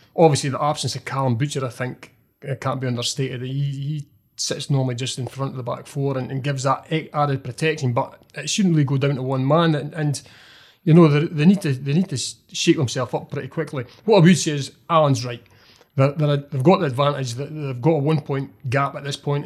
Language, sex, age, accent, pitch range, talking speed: English, male, 30-49, British, 130-150 Hz, 235 wpm